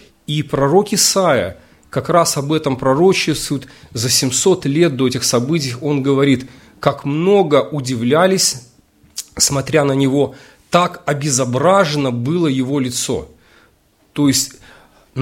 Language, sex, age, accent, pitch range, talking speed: Russian, male, 40-59, native, 130-185 Hz, 115 wpm